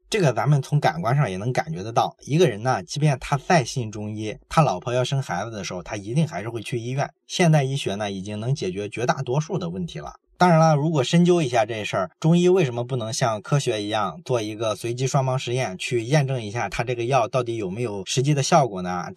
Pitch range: 115-160 Hz